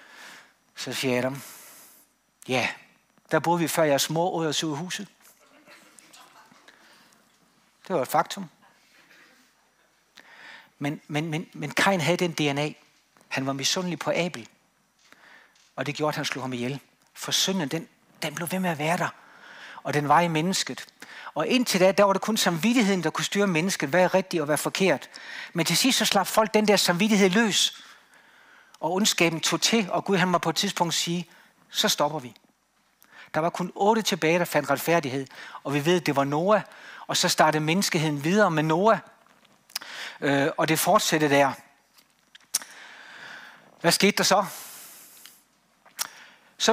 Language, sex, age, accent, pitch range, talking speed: Danish, male, 60-79, native, 155-205 Hz, 165 wpm